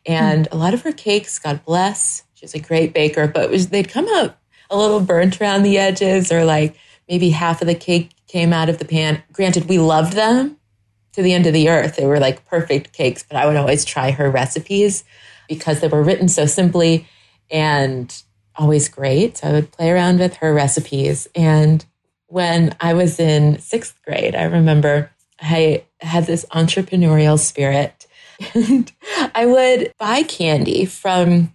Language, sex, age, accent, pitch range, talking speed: English, female, 30-49, American, 155-190 Hz, 180 wpm